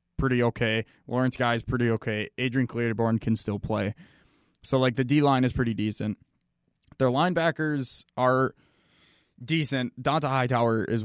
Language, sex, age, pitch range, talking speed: English, male, 20-39, 110-130 Hz, 140 wpm